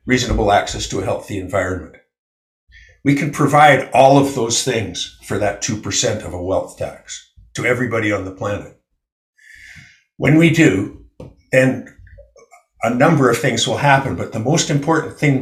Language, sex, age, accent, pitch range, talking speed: English, male, 50-69, American, 105-140 Hz, 155 wpm